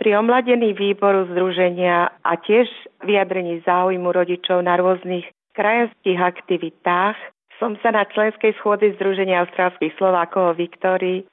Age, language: 40-59, Slovak